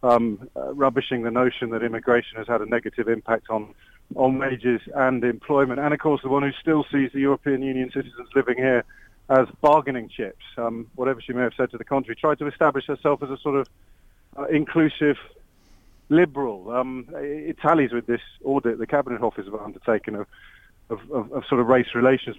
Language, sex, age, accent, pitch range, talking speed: English, male, 40-59, British, 120-145 Hz, 200 wpm